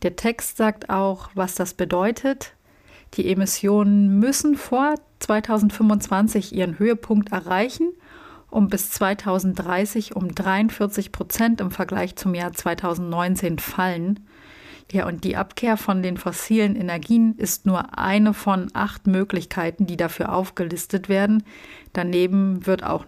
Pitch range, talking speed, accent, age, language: 180-210 Hz, 125 wpm, German, 40-59, German